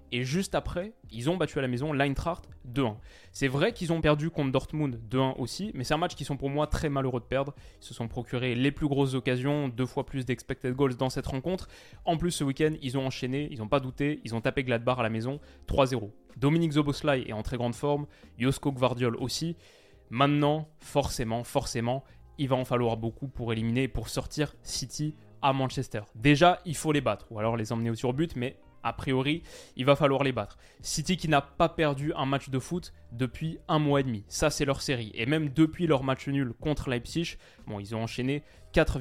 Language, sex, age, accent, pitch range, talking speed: French, male, 20-39, French, 125-150 Hz, 220 wpm